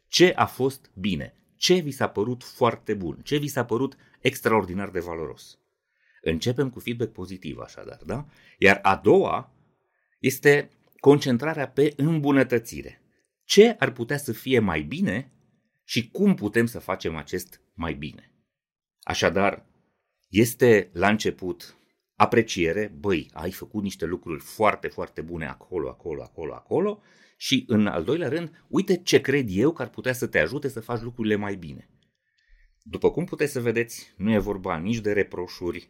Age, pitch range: 30-49, 95-140 Hz